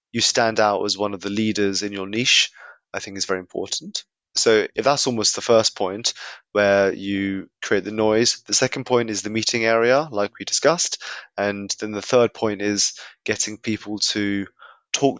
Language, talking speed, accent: English, 190 wpm, British